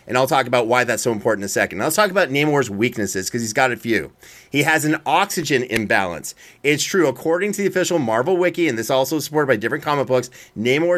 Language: English